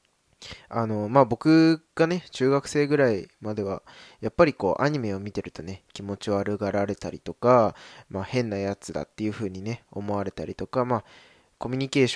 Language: Japanese